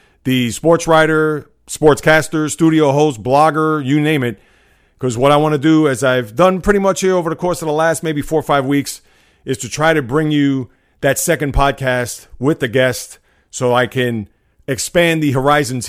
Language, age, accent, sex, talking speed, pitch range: English, 40-59, American, male, 195 wpm, 125-150 Hz